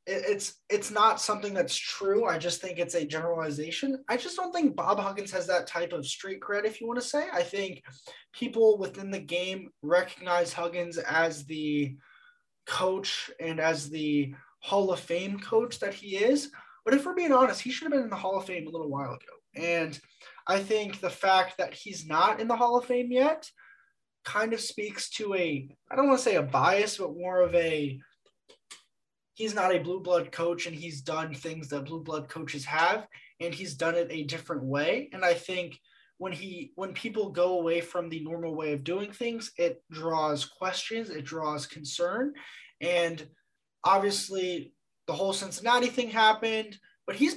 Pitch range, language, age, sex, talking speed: 165-230 Hz, English, 20-39, male, 190 wpm